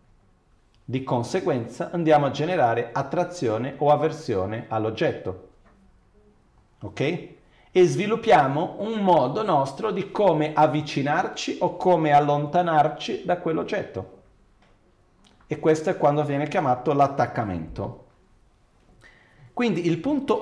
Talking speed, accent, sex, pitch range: 95 wpm, native, male, 135-195 Hz